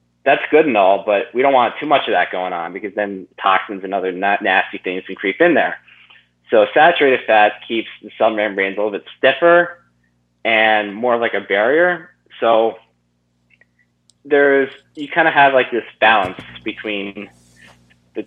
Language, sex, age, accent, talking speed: English, male, 20-39, American, 175 wpm